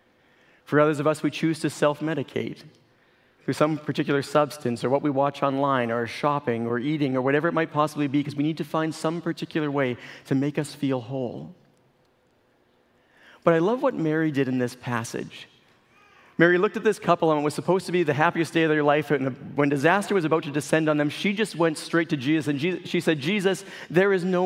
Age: 40-59